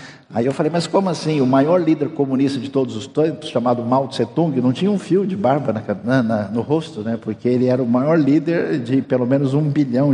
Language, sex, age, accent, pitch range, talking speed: Portuguese, male, 60-79, Brazilian, 125-165 Hz, 235 wpm